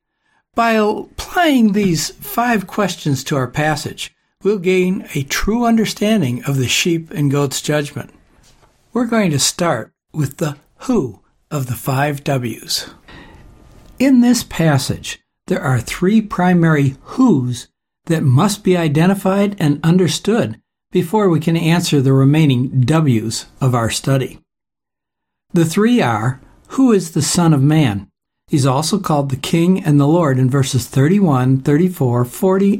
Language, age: English, 60-79